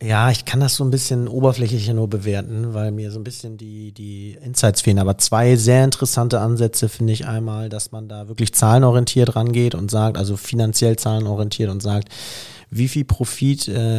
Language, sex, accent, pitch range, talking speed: German, male, German, 110-125 Hz, 185 wpm